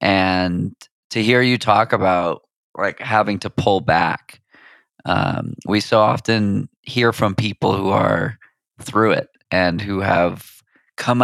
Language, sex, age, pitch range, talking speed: English, male, 20-39, 90-110 Hz, 140 wpm